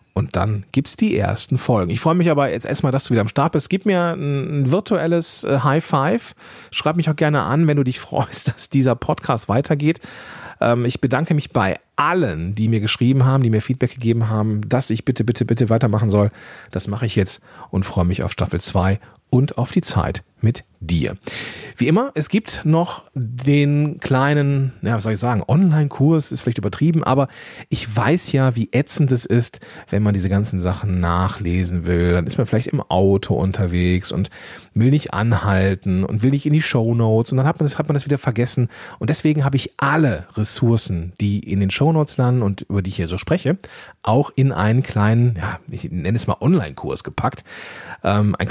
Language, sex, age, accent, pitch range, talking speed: German, male, 40-59, German, 105-145 Hz, 205 wpm